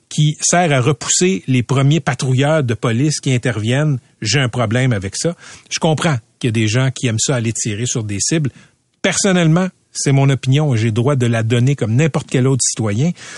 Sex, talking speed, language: male, 205 wpm, French